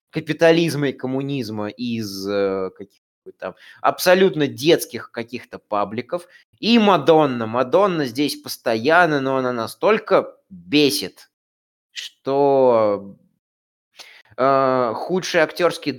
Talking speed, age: 90 wpm, 20-39